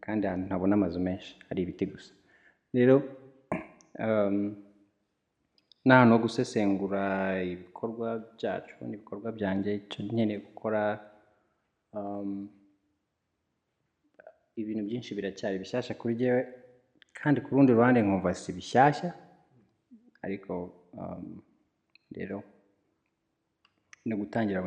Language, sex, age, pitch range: English, male, 30-49, 100-120 Hz